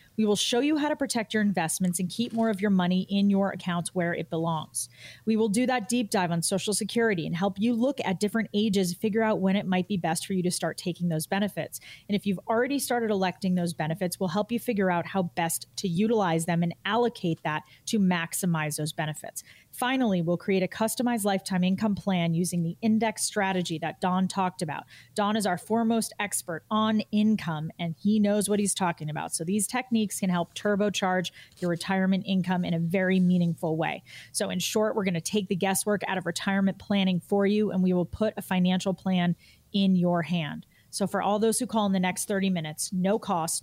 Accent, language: American, English